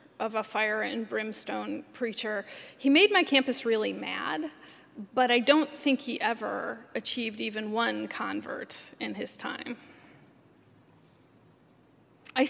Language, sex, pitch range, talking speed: English, female, 230-275 Hz, 125 wpm